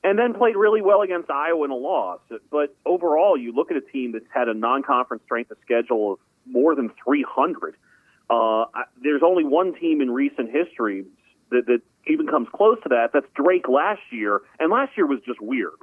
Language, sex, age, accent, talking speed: English, male, 40-59, American, 200 wpm